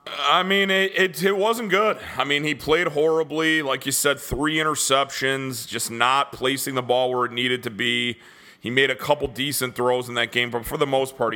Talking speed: 215 wpm